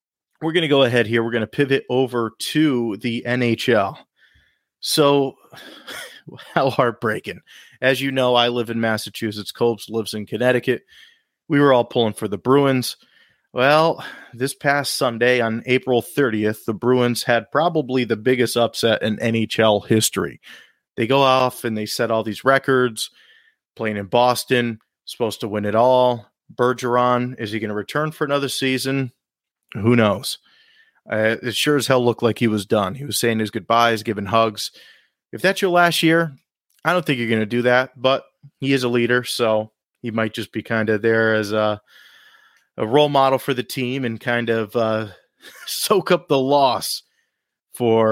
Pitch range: 110-135 Hz